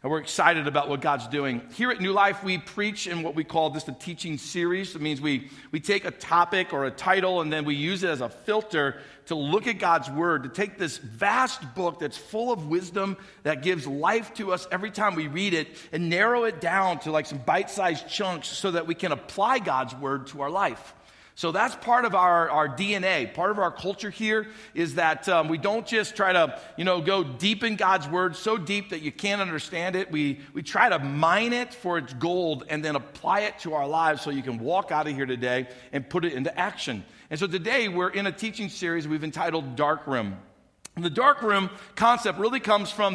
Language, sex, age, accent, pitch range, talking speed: English, male, 40-59, American, 155-200 Hz, 230 wpm